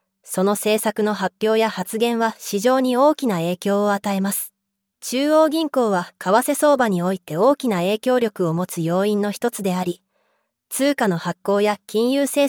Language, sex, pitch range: Japanese, female, 195-245 Hz